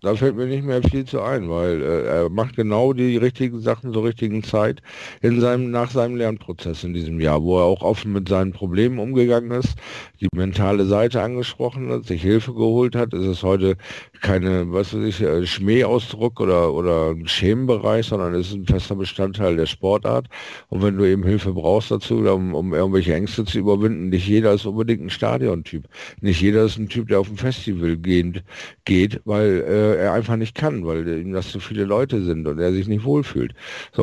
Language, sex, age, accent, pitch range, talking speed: German, male, 50-69, German, 85-110 Hz, 200 wpm